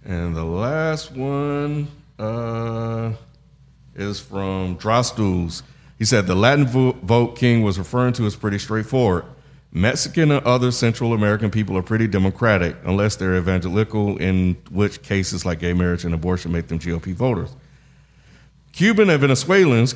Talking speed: 140 wpm